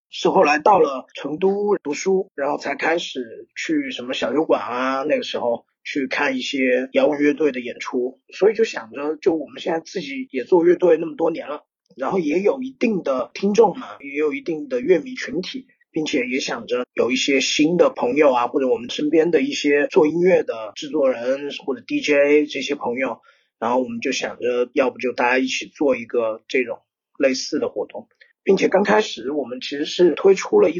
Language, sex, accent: Chinese, male, native